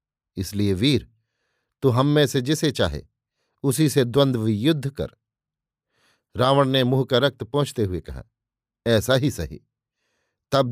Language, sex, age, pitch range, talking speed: Hindi, male, 50-69, 120-140 Hz, 140 wpm